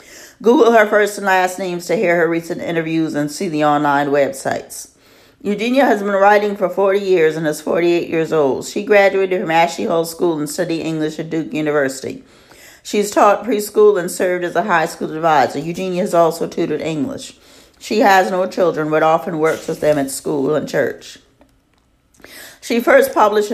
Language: English